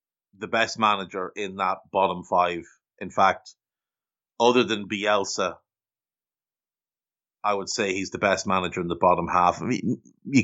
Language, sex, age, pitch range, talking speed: English, male, 30-49, 95-120 Hz, 145 wpm